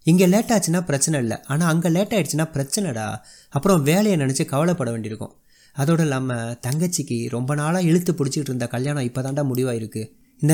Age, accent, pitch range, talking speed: 30-49, native, 135-165 Hz, 150 wpm